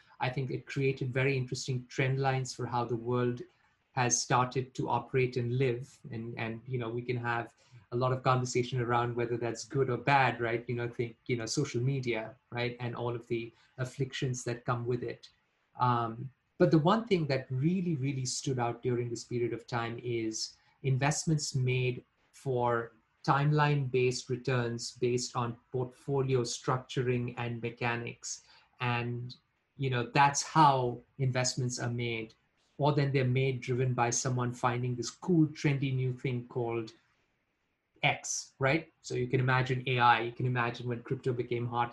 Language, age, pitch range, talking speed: English, 30-49, 120-140 Hz, 165 wpm